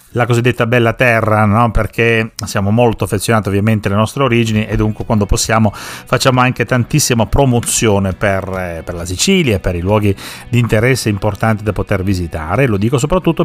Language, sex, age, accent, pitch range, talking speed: Italian, male, 40-59, native, 105-130 Hz, 170 wpm